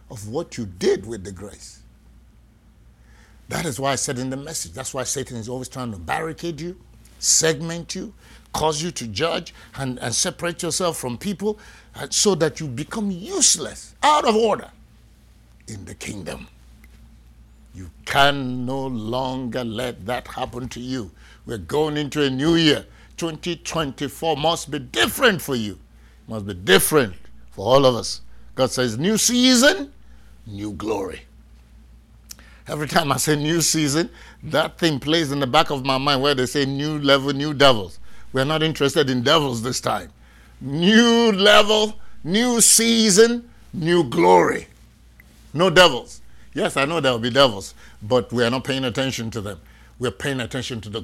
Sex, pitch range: male, 110-165 Hz